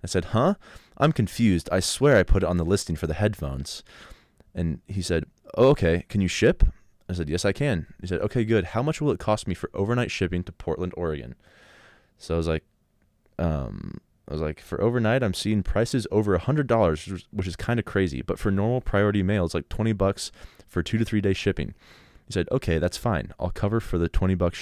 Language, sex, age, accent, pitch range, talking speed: English, male, 20-39, American, 85-105 Hz, 225 wpm